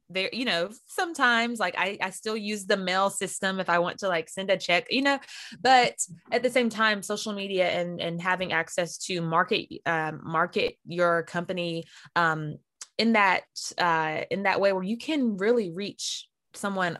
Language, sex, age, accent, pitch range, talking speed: English, female, 20-39, American, 170-215 Hz, 185 wpm